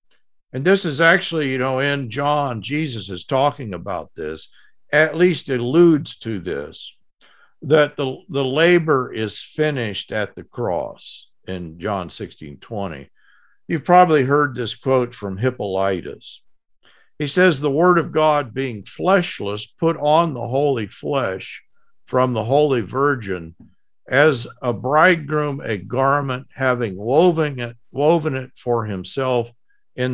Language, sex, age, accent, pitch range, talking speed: English, male, 50-69, American, 110-150 Hz, 135 wpm